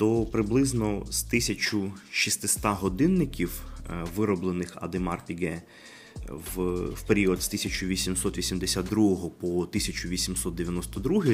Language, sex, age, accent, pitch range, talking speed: Ukrainian, male, 30-49, native, 90-110 Hz, 70 wpm